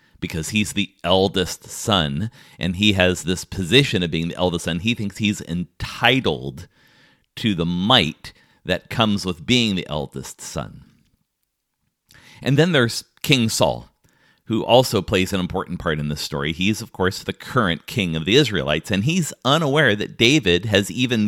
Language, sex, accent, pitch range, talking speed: English, male, American, 85-115 Hz, 165 wpm